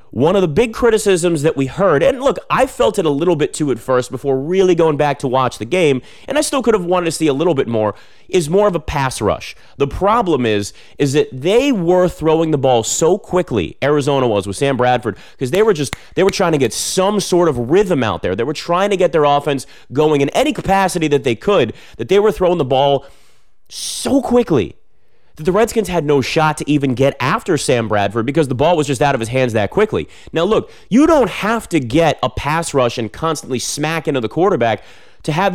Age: 30-49